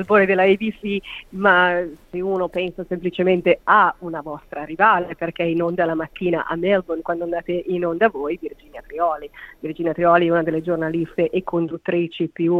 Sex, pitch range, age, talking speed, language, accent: female, 160-175 Hz, 30-49, 165 wpm, Italian, native